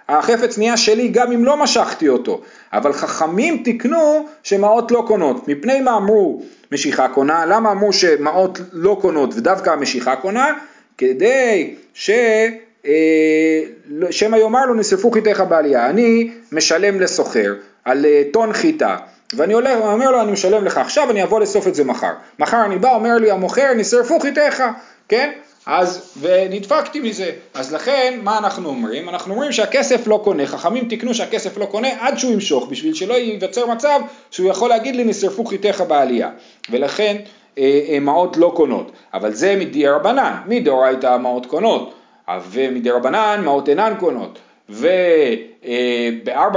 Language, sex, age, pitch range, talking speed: Hebrew, male, 40-59, 170-255 Hz, 145 wpm